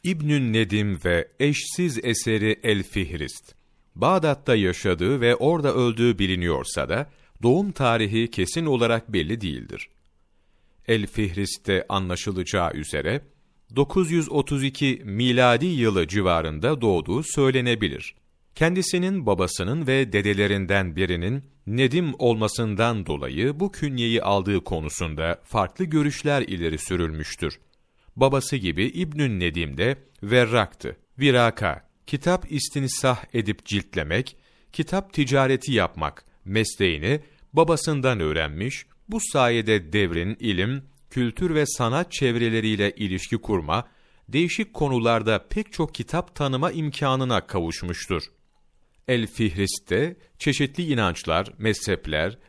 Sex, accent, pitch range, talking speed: male, native, 100-140 Hz, 95 wpm